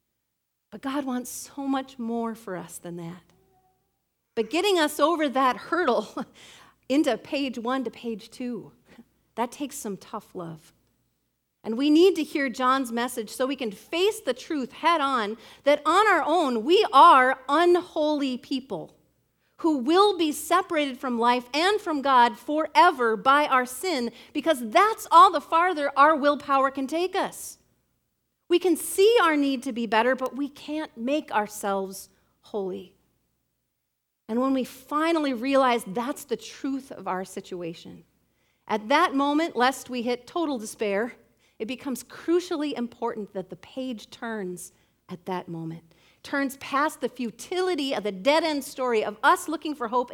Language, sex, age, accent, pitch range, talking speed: English, female, 40-59, American, 225-305 Hz, 155 wpm